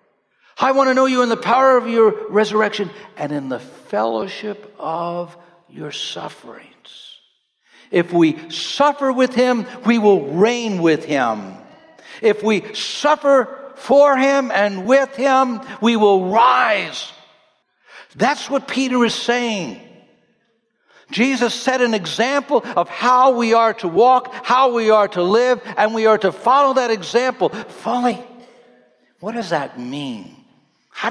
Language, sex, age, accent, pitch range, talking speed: English, male, 60-79, American, 165-250 Hz, 140 wpm